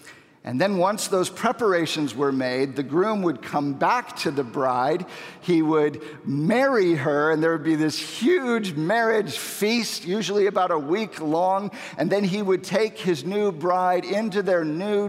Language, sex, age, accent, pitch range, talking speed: English, male, 50-69, American, 160-205 Hz, 170 wpm